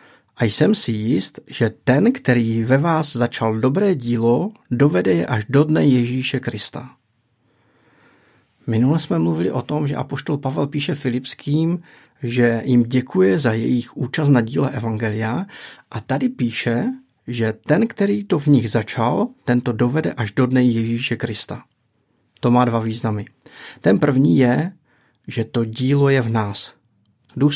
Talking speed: 150 wpm